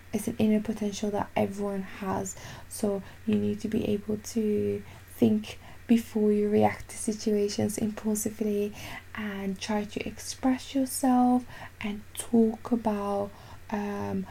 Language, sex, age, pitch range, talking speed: English, female, 10-29, 190-220 Hz, 125 wpm